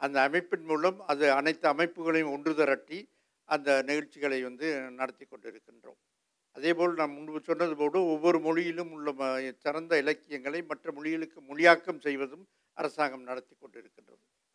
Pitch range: 145-175 Hz